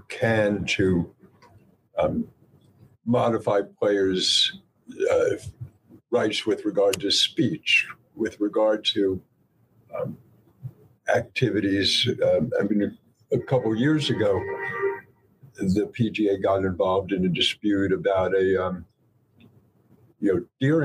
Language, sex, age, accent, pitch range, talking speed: English, male, 60-79, American, 105-145 Hz, 110 wpm